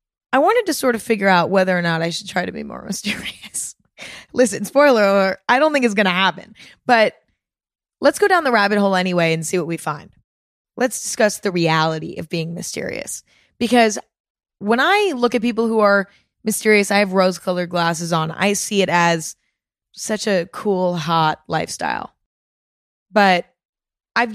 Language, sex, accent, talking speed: English, female, American, 180 wpm